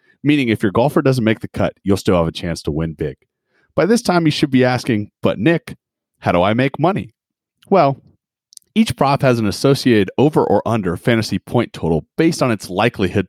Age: 30-49